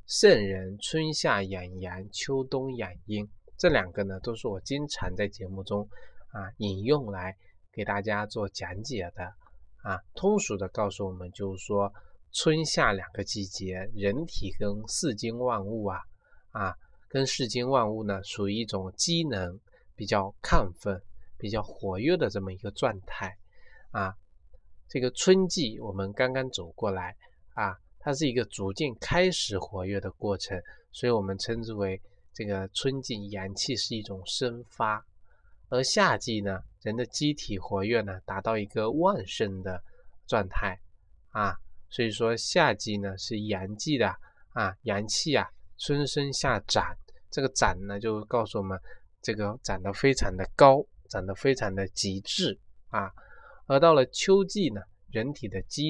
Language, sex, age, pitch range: Chinese, male, 20-39, 95-125 Hz